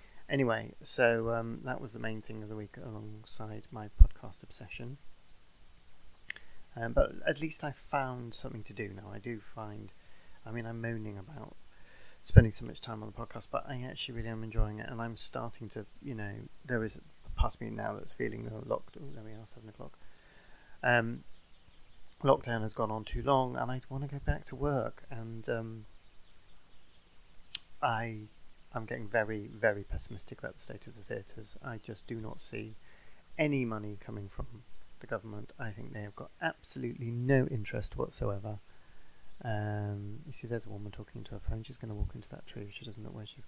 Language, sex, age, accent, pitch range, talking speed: English, male, 30-49, British, 105-125 Hz, 195 wpm